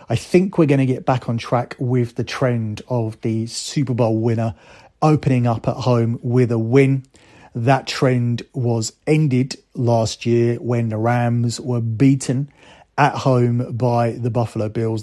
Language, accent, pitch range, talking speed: English, British, 115-130 Hz, 165 wpm